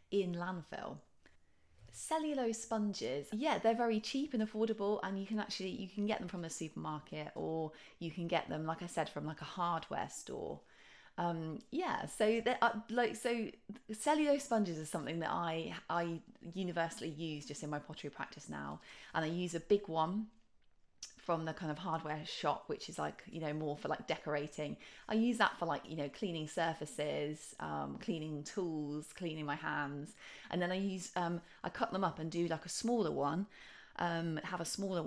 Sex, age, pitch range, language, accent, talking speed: female, 20-39, 155-205 Hz, English, British, 190 wpm